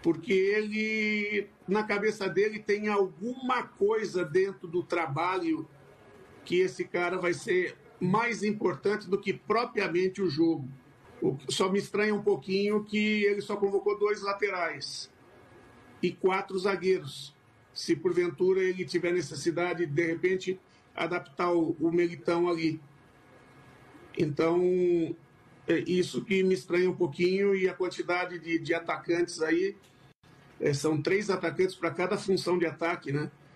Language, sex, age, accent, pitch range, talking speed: Portuguese, male, 50-69, Brazilian, 155-190 Hz, 125 wpm